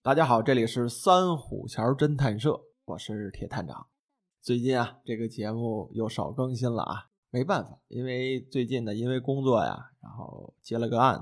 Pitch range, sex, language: 115-150 Hz, male, Chinese